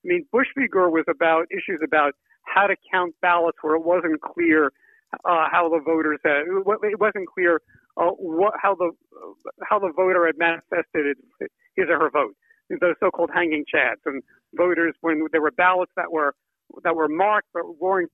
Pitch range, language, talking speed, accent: 160-250 Hz, English, 175 wpm, American